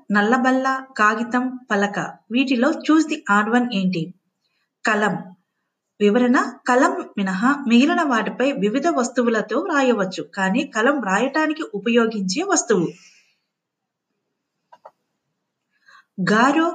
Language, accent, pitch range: Telugu, native, 205-270 Hz